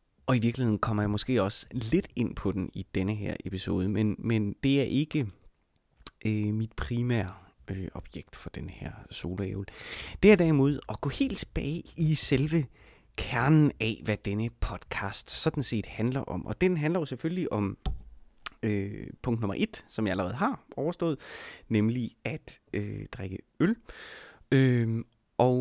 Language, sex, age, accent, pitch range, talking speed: Danish, male, 30-49, native, 100-140 Hz, 160 wpm